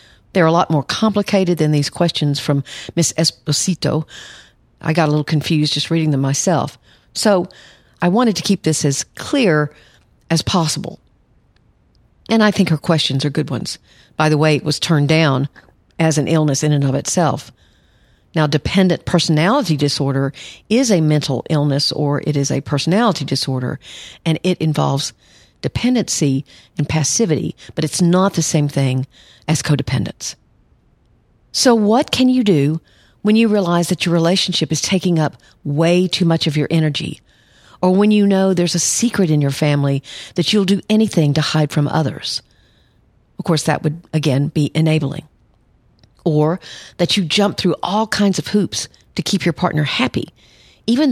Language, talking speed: English, 165 wpm